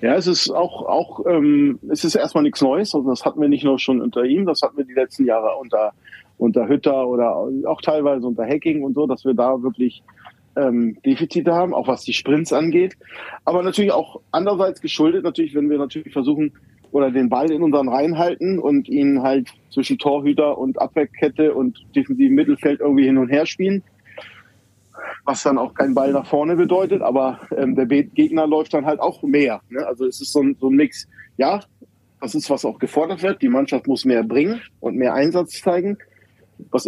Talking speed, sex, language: 200 wpm, male, German